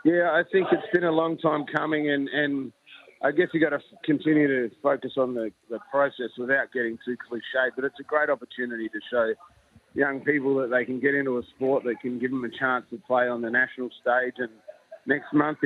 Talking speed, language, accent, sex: 225 wpm, English, Australian, male